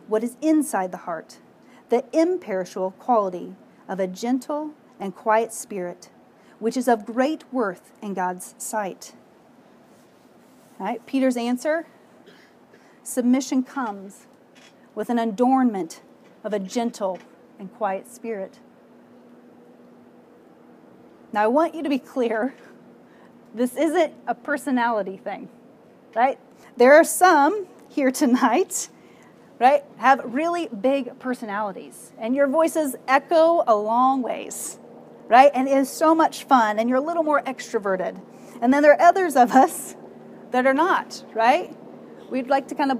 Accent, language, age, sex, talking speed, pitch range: American, English, 40-59, female, 130 wpm, 235-290 Hz